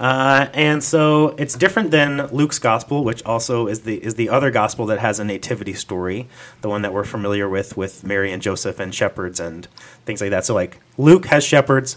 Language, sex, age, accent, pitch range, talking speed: English, male, 30-49, American, 110-140 Hz, 210 wpm